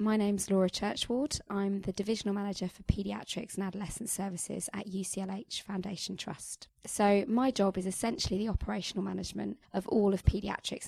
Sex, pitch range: female, 185-210 Hz